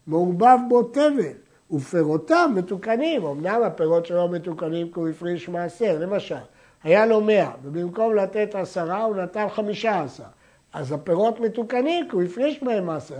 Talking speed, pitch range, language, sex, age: 145 wpm, 165-235 Hz, Hebrew, male, 60-79